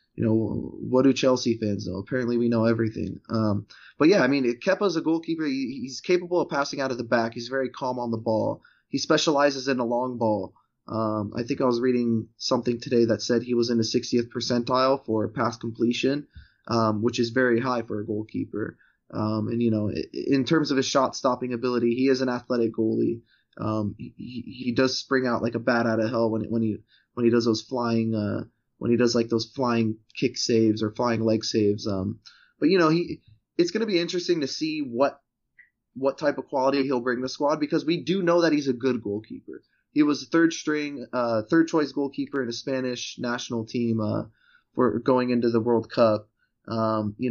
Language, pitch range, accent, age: English, 115-140 Hz, American, 20-39